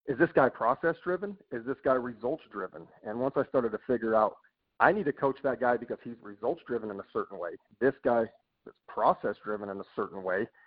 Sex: male